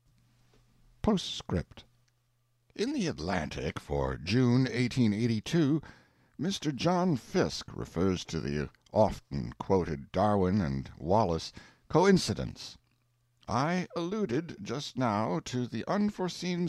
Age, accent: 60-79, American